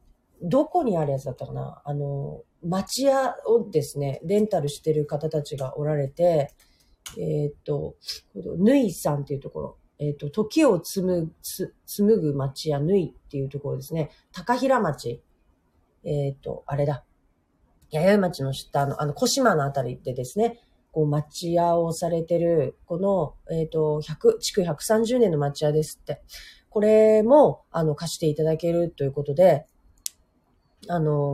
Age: 40-59